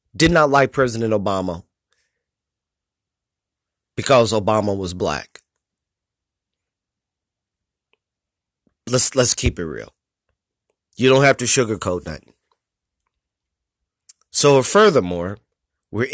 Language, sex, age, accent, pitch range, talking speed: English, male, 30-49, American, 105-135 Hz, 85 wpm